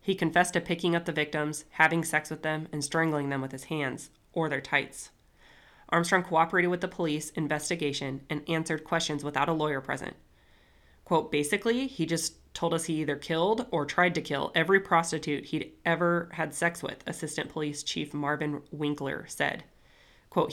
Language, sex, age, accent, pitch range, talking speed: English, female, 20-39, American, 145-170 Hz, 175 wpm